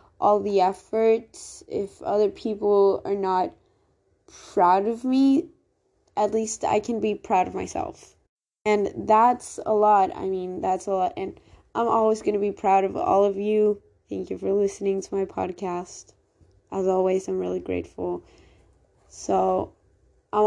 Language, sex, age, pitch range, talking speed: English, female, 20-39, 185-210 Hz, 155 wpm